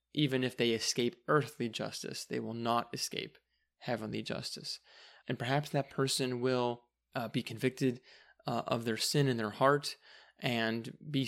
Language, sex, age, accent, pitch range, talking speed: English, male, 20-39, American, 115-130 Hz, 155 wpm